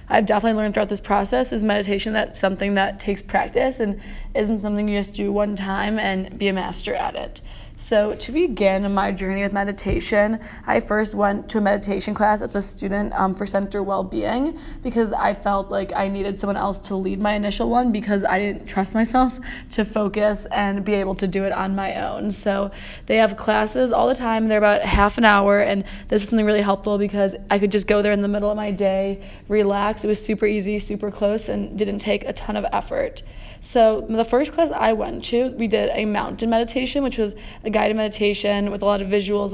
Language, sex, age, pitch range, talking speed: English, female, 20-39, 200-220 Hz, 215 wpm